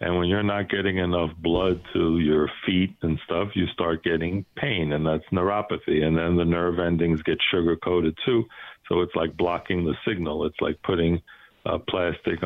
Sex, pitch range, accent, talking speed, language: male, 85-95 Hz, American, 185 wpm, English